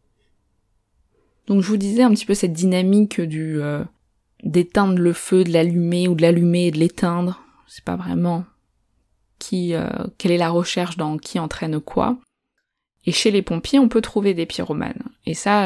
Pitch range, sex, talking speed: 155-210 Hz, female, 175 wpm